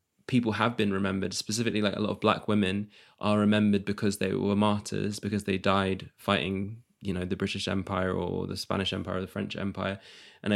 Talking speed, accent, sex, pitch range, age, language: 200 wpm, British, male, 95-105 Hz, 20-39, English